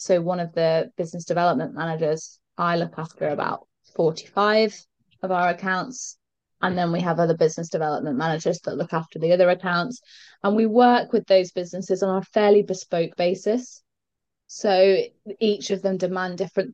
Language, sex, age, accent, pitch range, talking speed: English, female, 20-39, British, 160-190 Hz, 165 wpm